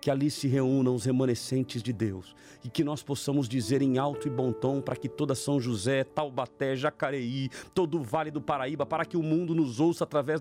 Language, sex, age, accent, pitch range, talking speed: Portuguese, male, 50-69, Brazilian, 170-250 Hz, 215 wpm